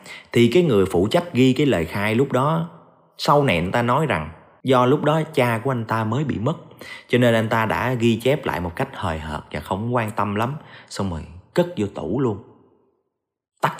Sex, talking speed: male, 220 wpm